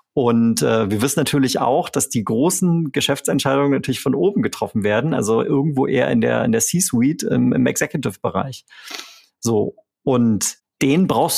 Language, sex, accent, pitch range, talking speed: German, male, German, 120-145 Hz, 160 wpm